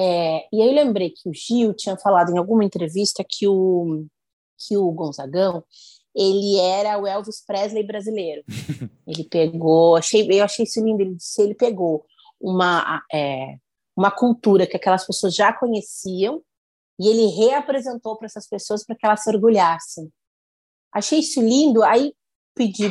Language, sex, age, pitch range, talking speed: Portuguese, female, 30-49, 180-225 Hz, 155 wpm